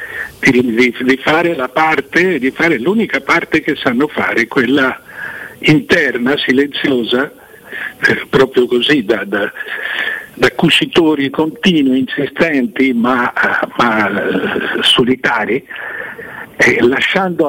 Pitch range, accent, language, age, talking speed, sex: 130-190 Hz, native, Italian, 60-79, 105 wpm, male